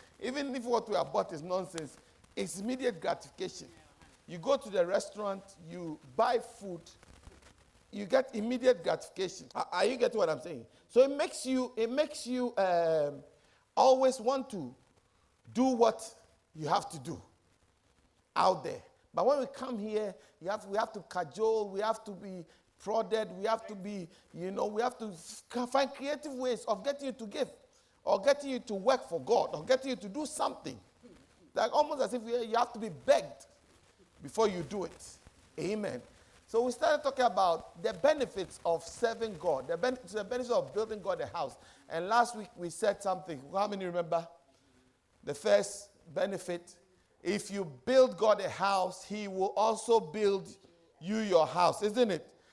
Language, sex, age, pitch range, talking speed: English, male, 50-69, 180-250 Hz, 175 wpm